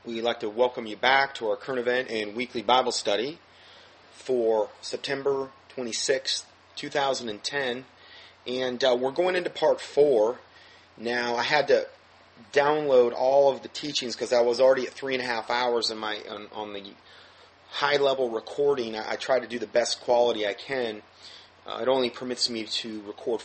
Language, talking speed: English, 175 wpm